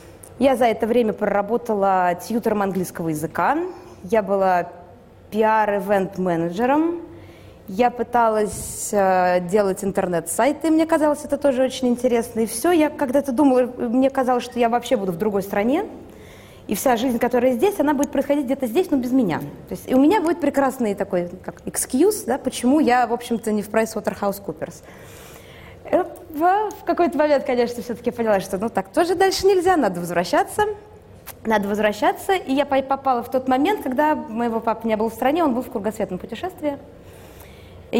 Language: Russian